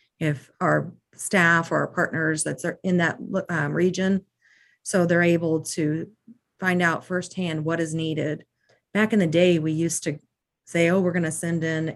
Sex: female